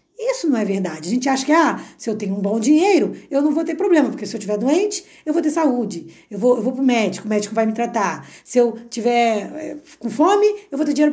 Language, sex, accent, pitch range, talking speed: Portuguese, female, Brazilian, 215-300 Hz, 270 wpm